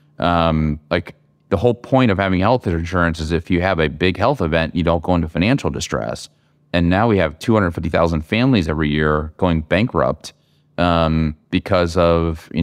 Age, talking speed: 30-49, 175 wpm